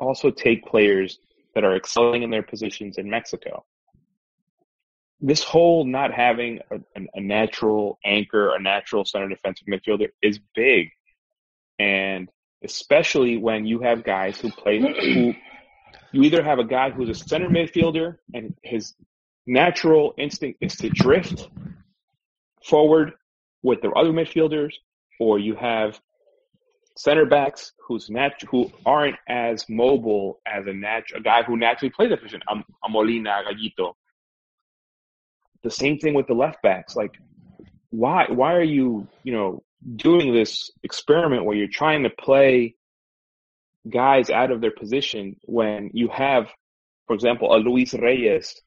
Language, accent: English, American